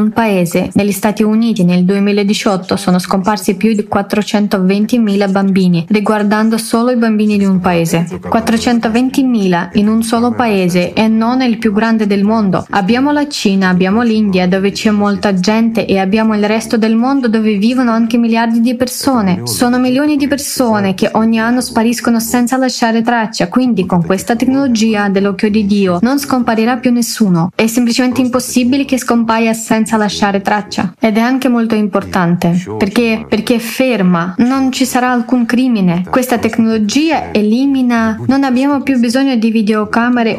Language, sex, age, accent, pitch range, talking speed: Italian, female, 20-39, native, 205-250 Hz, 155 wpm